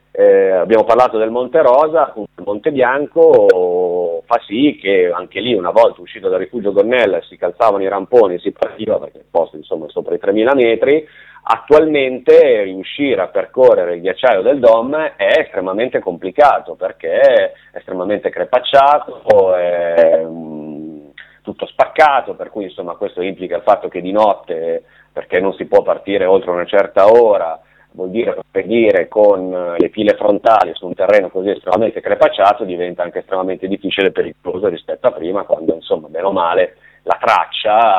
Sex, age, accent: male, 30-49, native